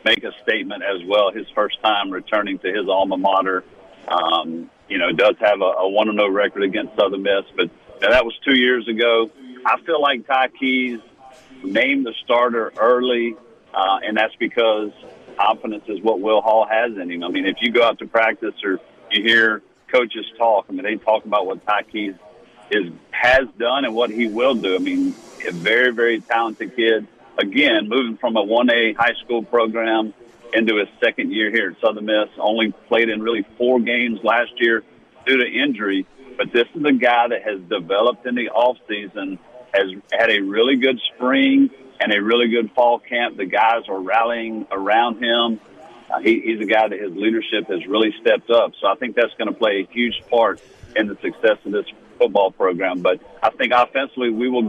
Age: 50-69